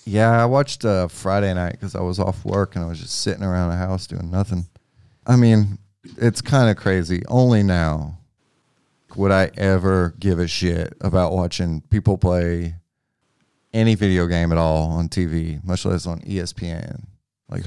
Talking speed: 170 wpm